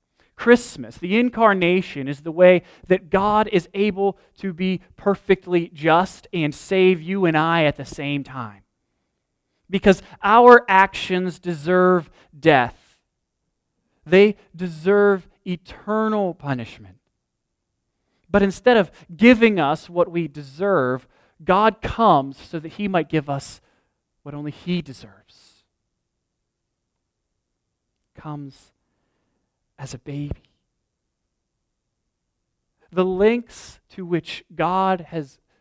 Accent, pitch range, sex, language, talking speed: American, 145-195 Hz, male, English, 105 wpm